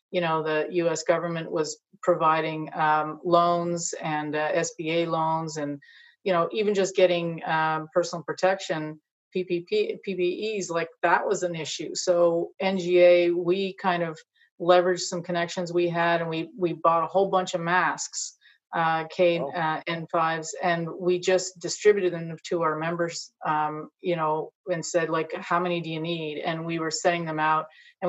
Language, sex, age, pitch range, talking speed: English, female, 30-49, 160-180 Hz, 165 wpm